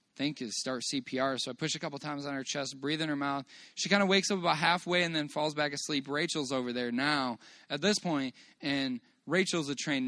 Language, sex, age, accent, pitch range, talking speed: English, male, 20-39, American, 130-155 Hz, 245 wpm